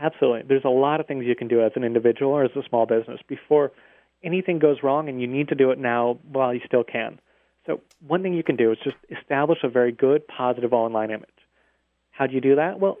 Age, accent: 30-49, American